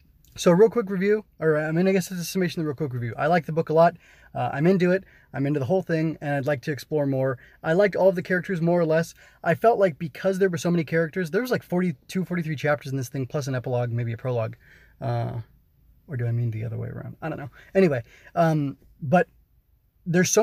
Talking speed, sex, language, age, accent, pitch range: 260 wpm, male, English, 20-39, American, 130-170 Hz